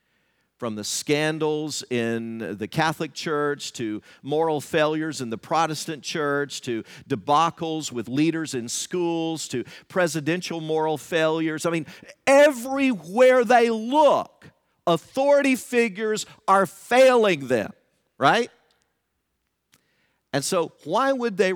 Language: English